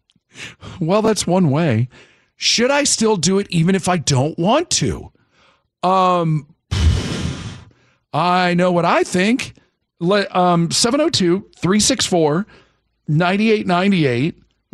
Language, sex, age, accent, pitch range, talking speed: English, male, 50-69, American, 135-190 Hz, 100 wpm